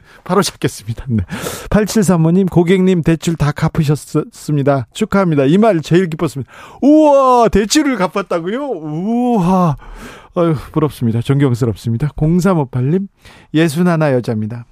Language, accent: Korean, native